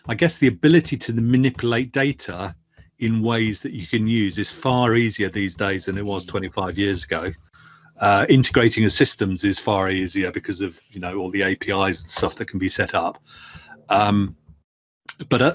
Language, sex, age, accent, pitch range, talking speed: English, male, 40-59, British, 100-120 Hz, 180 wpm